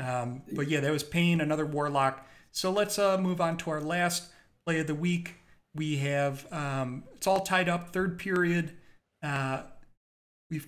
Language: English